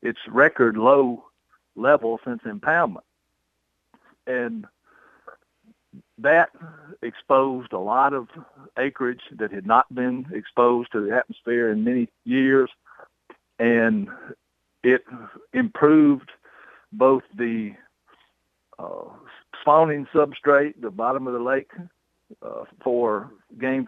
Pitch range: 115-140 Hz